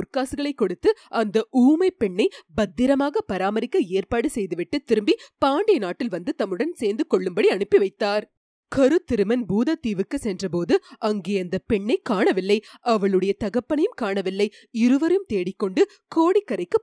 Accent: native